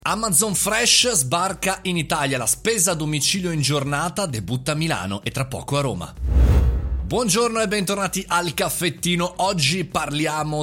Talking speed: 145 wpm